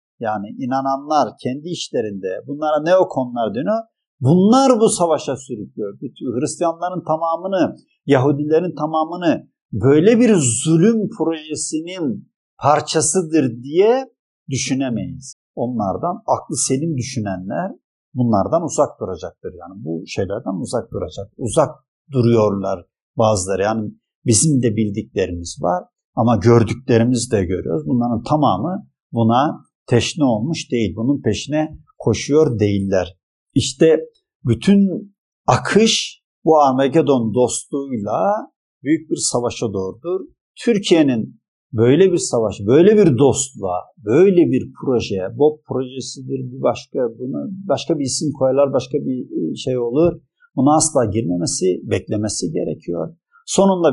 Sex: male